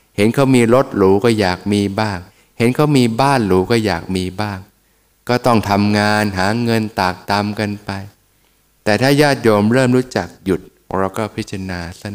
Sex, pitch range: male, 95-115 Hz